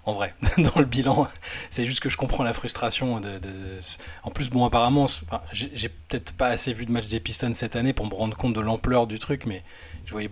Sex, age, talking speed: male, 20-39, 250 wpm